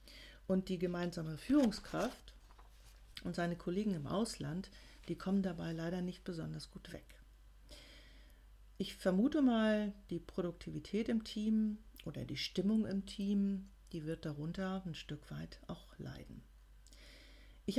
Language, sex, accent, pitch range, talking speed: German, female, German, 170-210 Hz, 130 wpm